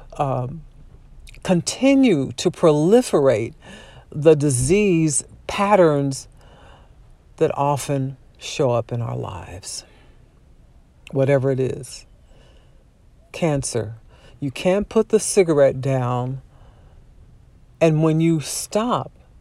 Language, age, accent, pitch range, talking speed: English, 50-69, American, 125-165 Hz, 85 wpm